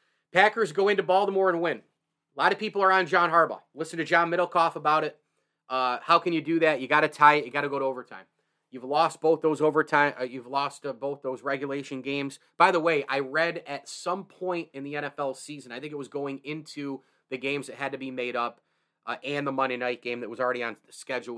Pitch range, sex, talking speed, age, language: 135-165 Hz, male, 245 wpm, 30-49, English